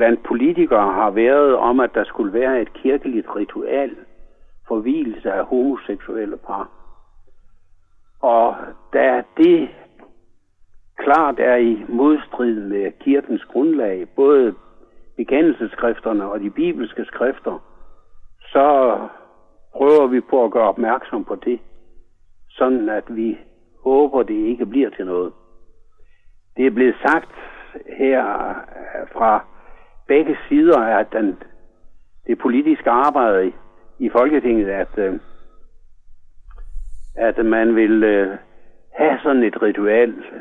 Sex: male